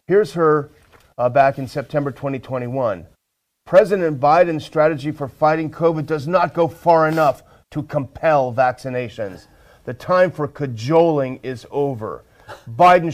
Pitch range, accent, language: 125-160 Hz, American, English